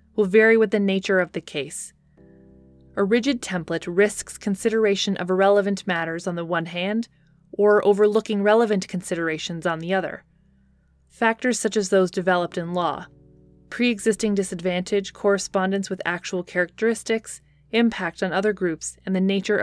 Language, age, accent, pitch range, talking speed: English, 20-39, American, 170-210 Hz, 145 wpm